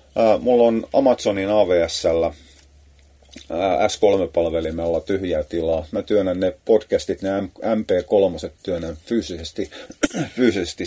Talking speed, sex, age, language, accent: 85 wpm, male, 30-49, Finnish, native